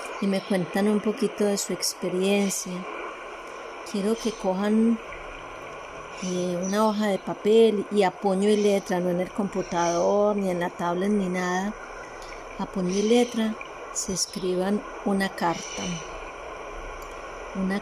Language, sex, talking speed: Spanish, female, 130 wpm